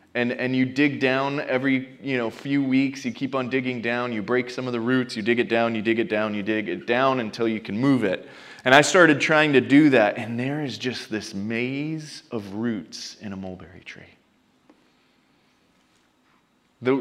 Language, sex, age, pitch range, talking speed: English, male, 20-39, 125-190 Hz, 205 wpm